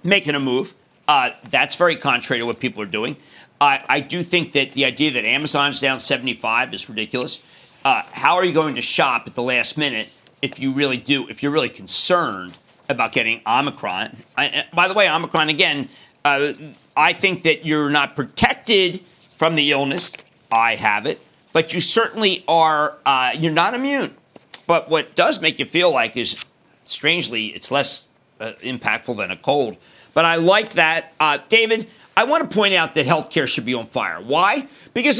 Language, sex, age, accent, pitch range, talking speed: English, male, 50-69, American, 150-220 Hz, 185 wpm